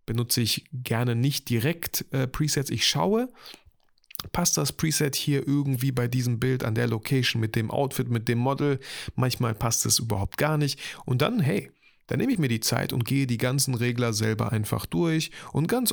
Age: 30-49